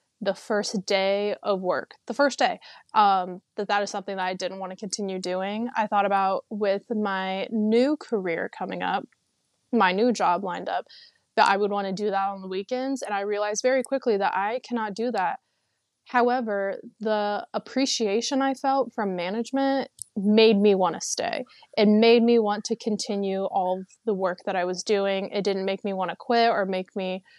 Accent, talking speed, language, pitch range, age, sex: American, 195 wpm, English, 195-235 Hz, 20-39, female